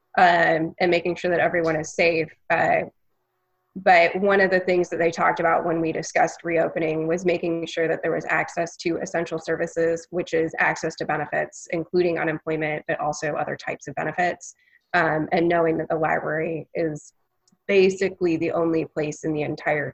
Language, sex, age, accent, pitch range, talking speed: English, female, 20-39, American, 160-175 Hz, 180 wpm